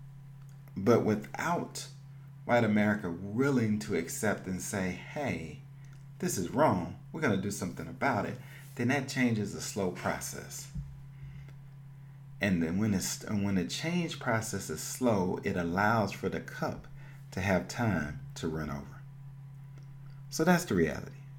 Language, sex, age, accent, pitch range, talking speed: English, male, 40-59, American, 105-140 Hz, 145 wpm